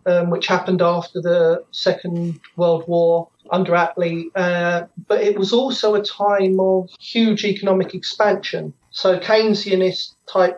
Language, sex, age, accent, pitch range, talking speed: English, male, 40-59, British, 175-195 Hz, 135 wpm